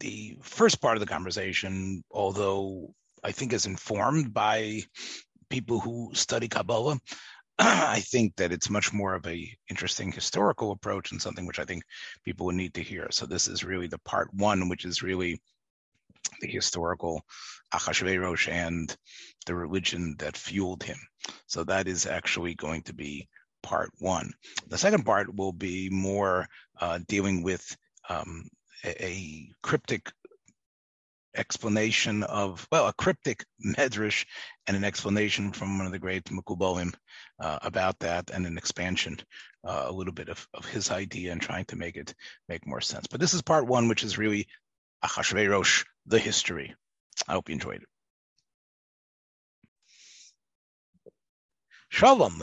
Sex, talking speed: male, 150 wpm